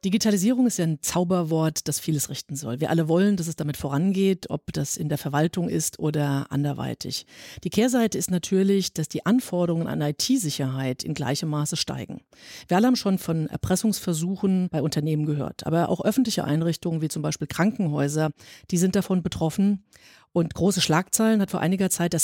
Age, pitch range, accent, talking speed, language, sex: 40-59, 155-195 Hz, German, 180 wpm, German, female